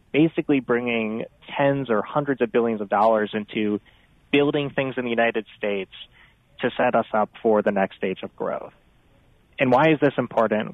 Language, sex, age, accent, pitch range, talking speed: English, male, 30-49, American, 110-130 Hz, 175 wpm